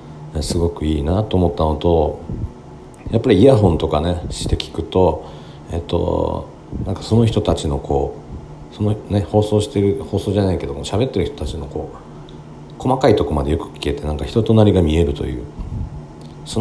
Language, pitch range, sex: Japanese, 75-95 Hz, male